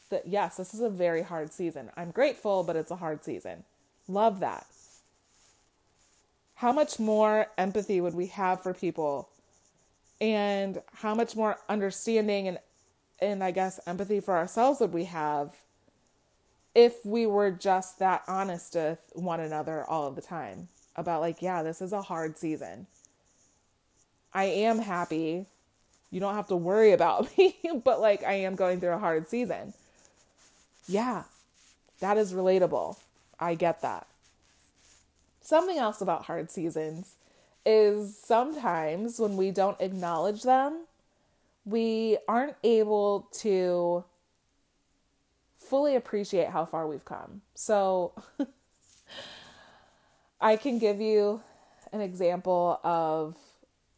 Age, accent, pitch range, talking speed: 30-49, American, 165-215 Hz, 130 wpm